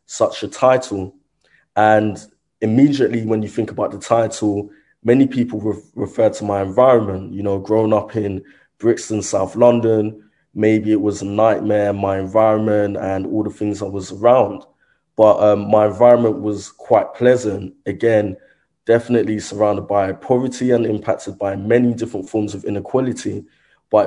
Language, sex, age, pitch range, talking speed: English, male, 20-39, 100-115 Hz, 150 wpm